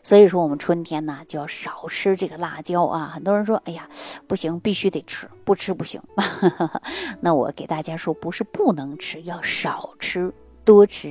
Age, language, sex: 30-49, Chinese, female